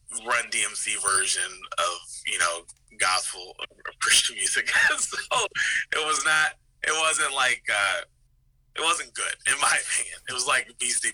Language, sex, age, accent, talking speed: English, male, 30-49, American, 145 wpm